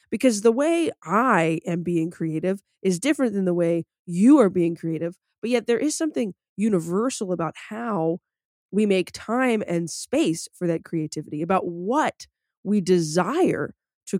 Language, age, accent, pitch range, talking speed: English, 20-39, American, 170-225 Hz, 155 wpm